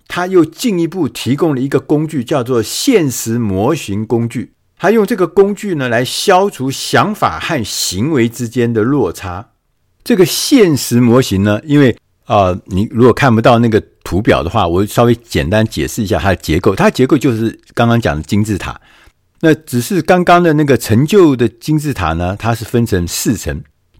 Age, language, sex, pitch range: 50-69, Chinese, male, 95-130 Hz